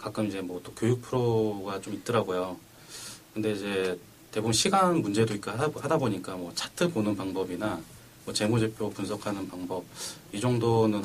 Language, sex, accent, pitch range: Korean, male, native, 105-135 Hz